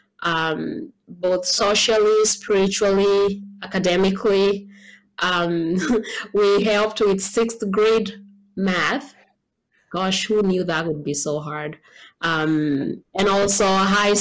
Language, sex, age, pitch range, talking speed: English, female, 20-39, 175-220 Hz, 100 wpm